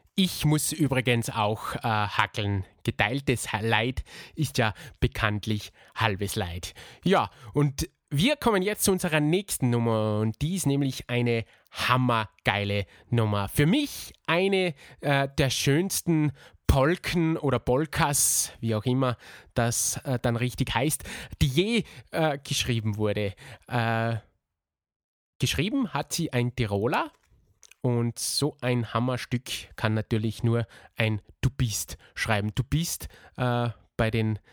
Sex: male